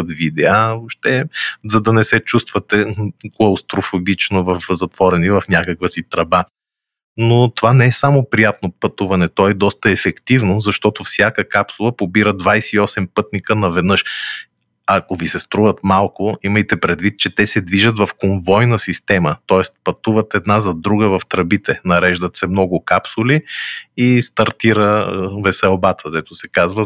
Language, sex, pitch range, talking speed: Bulgarian, male, 95-110 Hz, 145 wpm